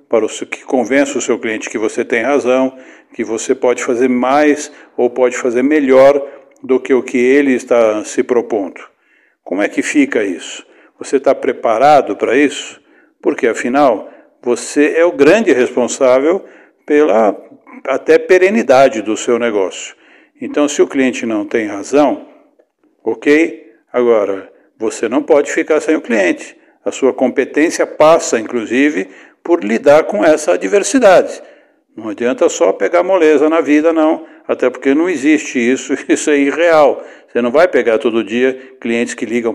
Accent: Brazilian